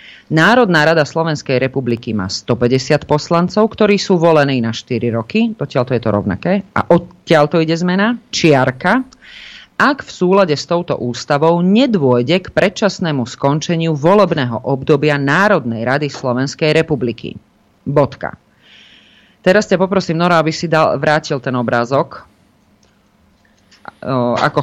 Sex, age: female, 40-59